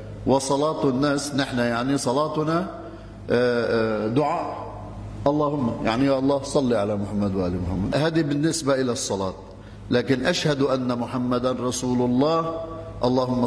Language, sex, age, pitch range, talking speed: Arabic, male, 50-69, 125-170 Hz, 115 wpm